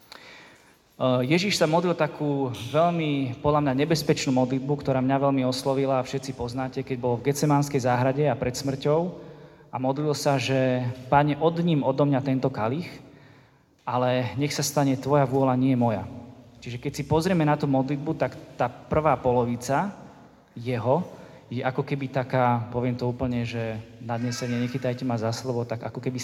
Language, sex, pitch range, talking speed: Slovak, male, 125-145 Hz, 160 wpm